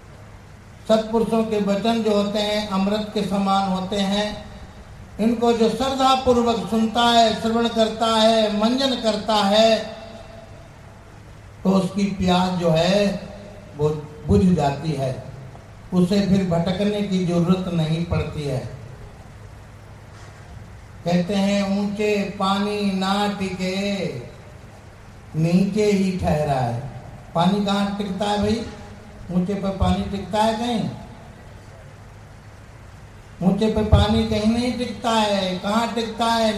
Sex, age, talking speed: male, 60-79, 115 wpm